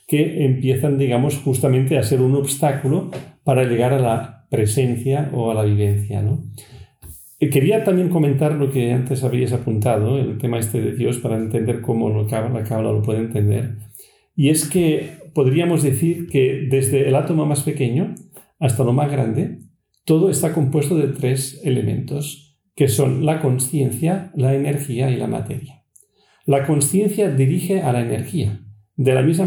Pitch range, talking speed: 120-150 Hz, 165 wpm